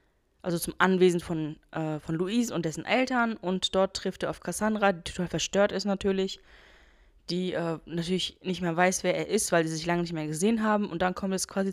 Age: 10-29